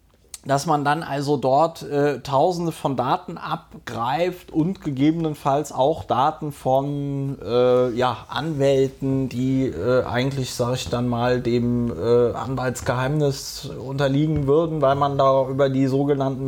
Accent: German